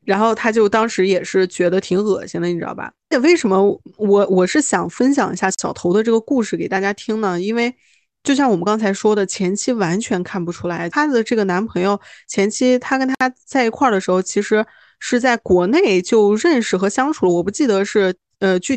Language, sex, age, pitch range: Chinese, female, 20-39, 185-230 Hz